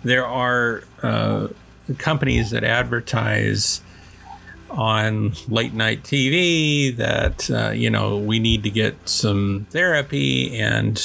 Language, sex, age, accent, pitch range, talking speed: English, male, 50-69, American, 105-135 Hz, 115 wpm